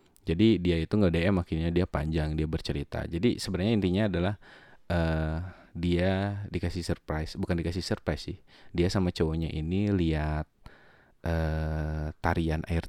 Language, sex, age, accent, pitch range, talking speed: Indonesian, male, 30-49, native, 80-105 Hz, 140 wpm